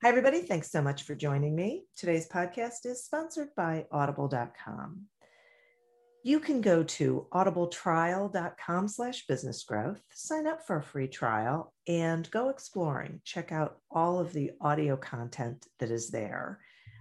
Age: 50-69